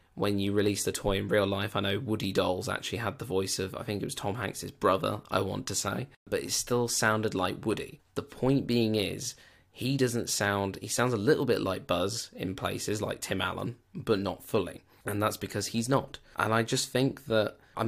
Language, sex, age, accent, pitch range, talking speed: English, male, 20-39, British, 100-115 Hz, 225 wpm